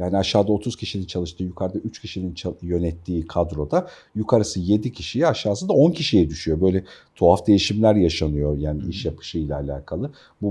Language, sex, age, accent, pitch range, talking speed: Turkish, male, 50-69, native, 90-140 Hz, 150 wpm